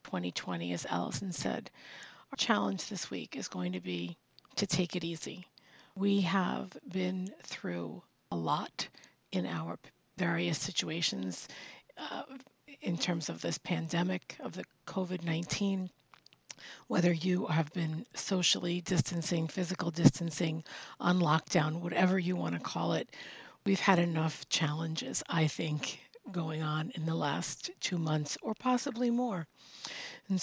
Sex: female